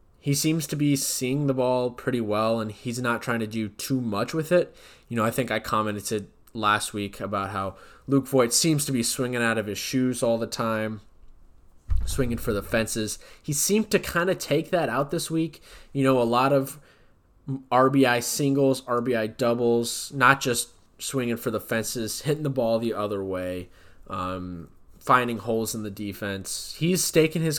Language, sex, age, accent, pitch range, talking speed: English, male, 20-39, American, 105-130 Hz, 185 wpm